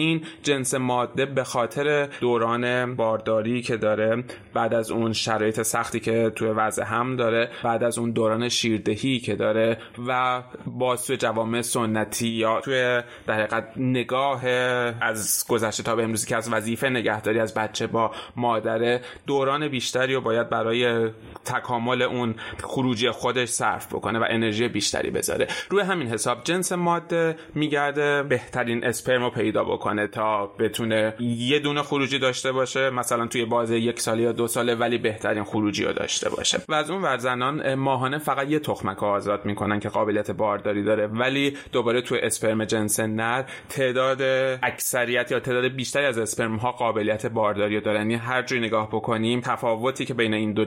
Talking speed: 160 wpm